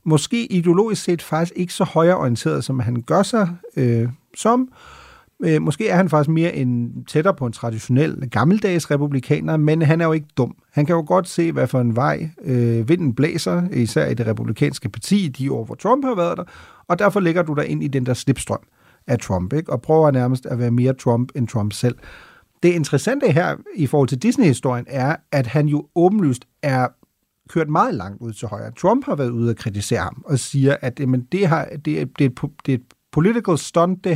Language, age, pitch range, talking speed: Danish, 40-59, 125-170 Hz, 205 wpm